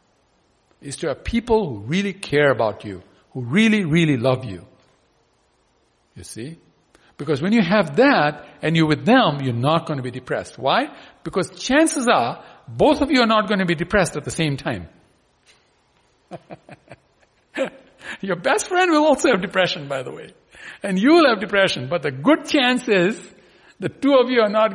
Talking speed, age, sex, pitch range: 180 wpm, 60-79, male, 130-220 Hz